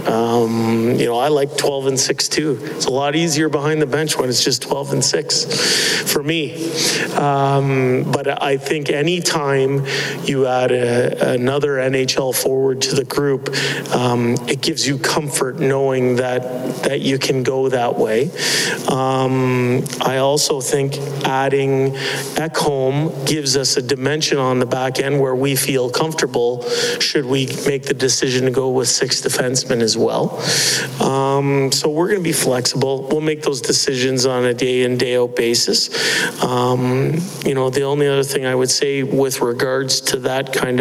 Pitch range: 130-145 Hz